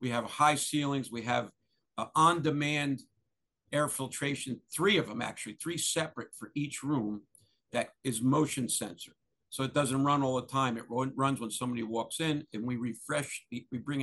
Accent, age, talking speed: American, 50-69, 170 wpm